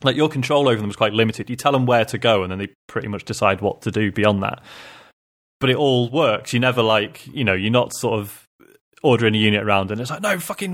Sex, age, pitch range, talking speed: male, 20-39, 100-130 Hz, 265 wpm